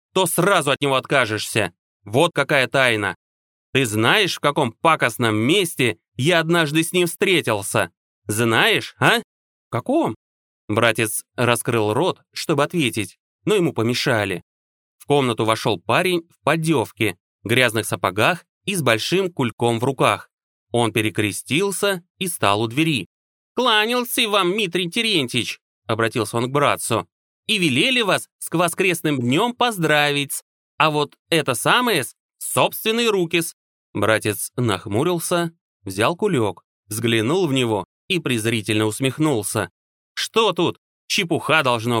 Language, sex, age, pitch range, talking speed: Russian, male, 30-49, 110-165 Hz, 125 wpm